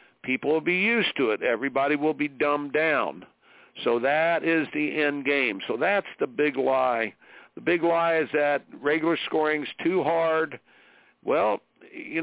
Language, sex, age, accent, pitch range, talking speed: English, male, 60-79, American, 140-185 Hz, 160 wpm